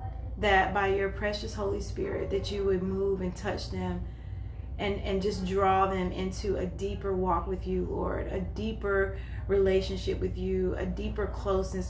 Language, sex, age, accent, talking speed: English, female, 30-49, American, 165 wpm